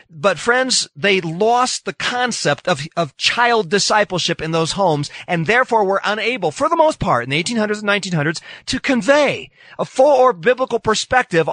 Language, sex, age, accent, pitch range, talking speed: English, male, 40-59, American, 175-250 Hz, 170 wpm